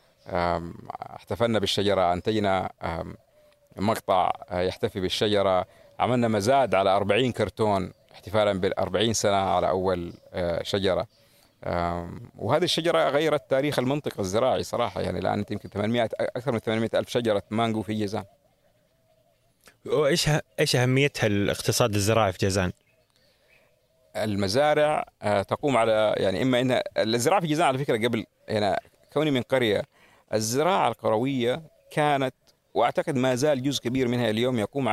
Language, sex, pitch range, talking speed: Arabic, male, 105-135 Hz, 120 wpm